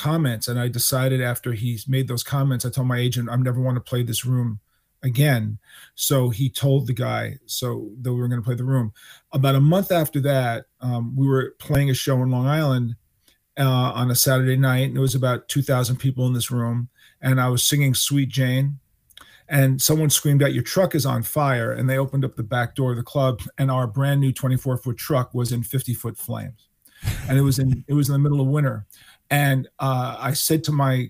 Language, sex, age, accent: English, male, 40-59, American